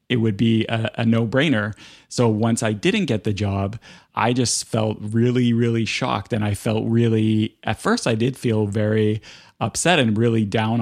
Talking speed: 190 wpm